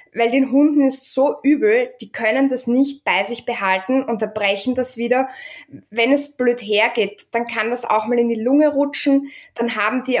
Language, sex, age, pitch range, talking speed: German, female, 20-39, 210-265 Hz, 195 wpm